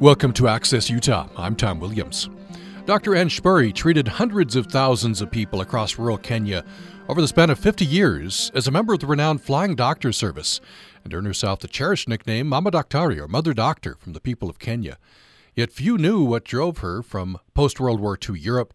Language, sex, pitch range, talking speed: English, male, 105-145 Hz, 200 wpm